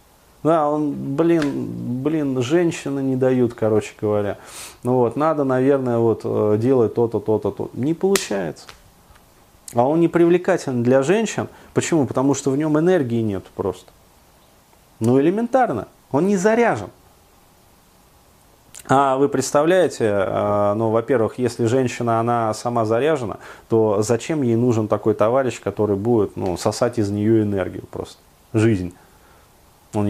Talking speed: 130 wpm